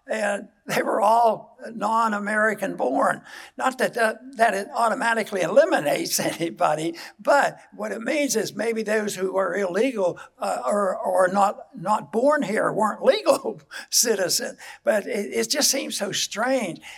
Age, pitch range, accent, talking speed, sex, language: 60-79, 195-250 Hz, American, 145 wpm, male, English